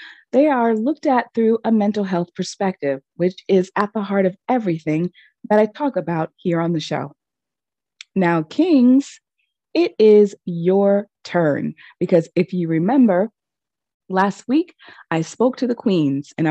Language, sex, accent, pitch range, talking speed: English, female, American, 165-255 Hz, 155 wpm